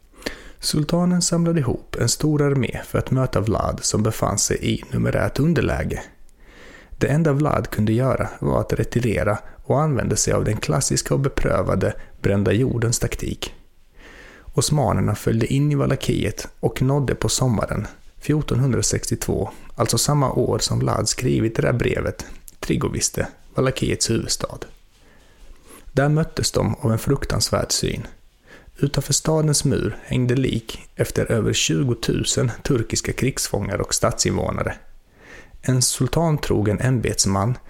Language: Swedish